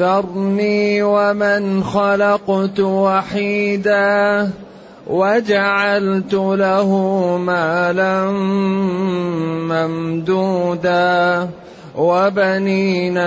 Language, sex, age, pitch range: Arabic, male, 30-49, 175-200 Hz